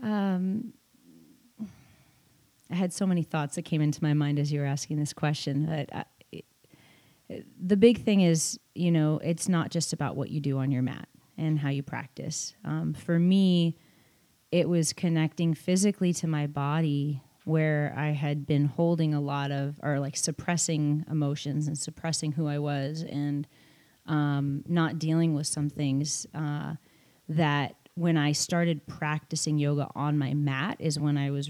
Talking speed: 165 wpm